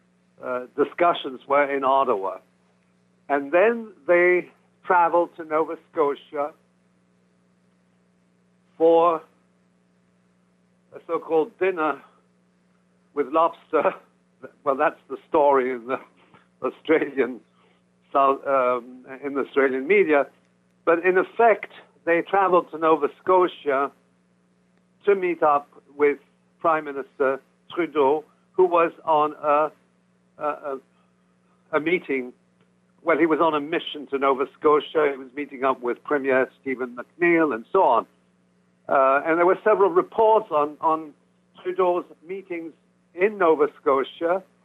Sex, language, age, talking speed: male, English, 60-79, 120 wpm